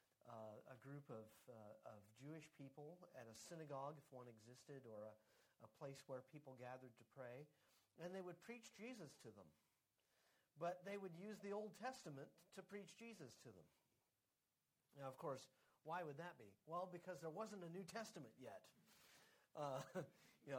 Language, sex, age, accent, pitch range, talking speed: English, male, 40-59, American, 130-180 Hz, 170 wpm